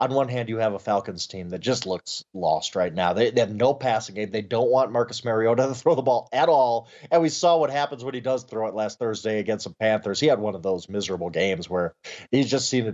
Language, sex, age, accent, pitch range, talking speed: English, male, 30-49, American, 105-135 Hz, 270 wpm